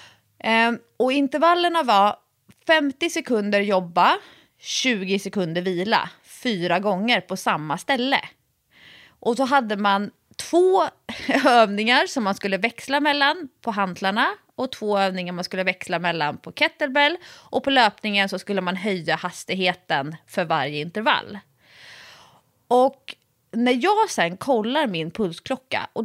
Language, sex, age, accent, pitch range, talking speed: Swedish, female, 30-49, native, 185-260 Hz, 125 wpm